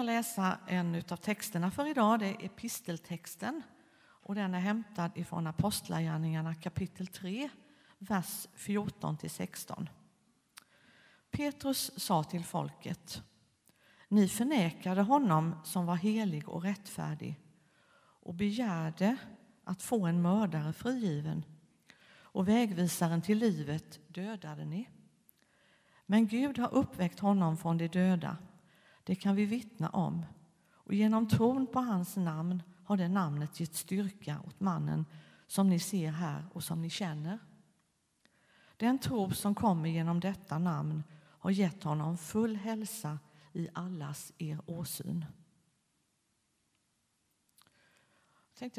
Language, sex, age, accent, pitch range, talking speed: Swedish, female, 50-69, native, 165-215 Hz, 120 wpm